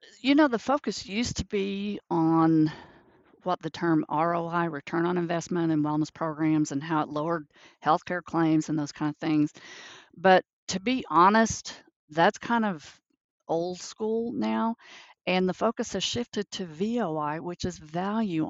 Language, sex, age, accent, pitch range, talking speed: English, female, 50-69, American, 165-230 Hz, 160 wpm